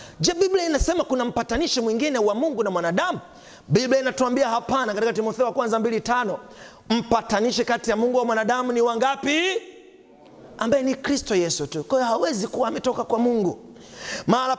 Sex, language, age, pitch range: male, Swahili, 40-59, 205-295 Hz